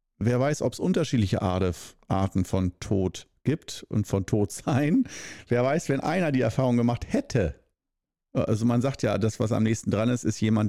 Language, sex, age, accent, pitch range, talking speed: German, male, 50-69, German, 95-120 Hz, 185 wpm